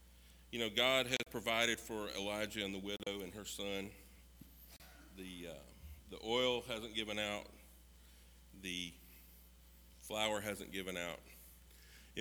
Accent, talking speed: American, 130 wpm